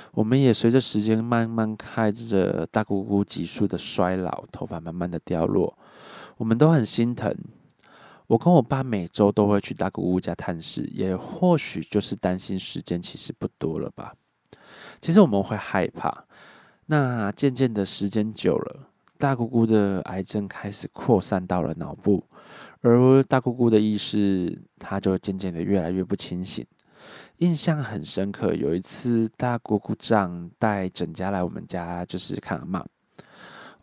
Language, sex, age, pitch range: Chinese, male, 20-39, 95-120 Hz